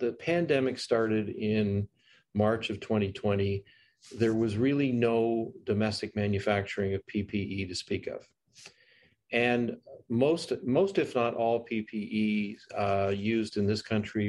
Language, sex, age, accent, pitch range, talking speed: English, male, 40-59, American, 100-120 Hz, 125 wpm